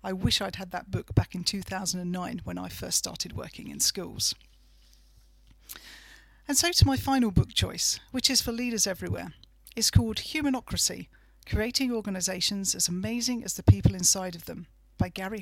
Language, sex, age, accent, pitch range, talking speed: English, female, 50-69, British, 180-235 Hz, 165 wpm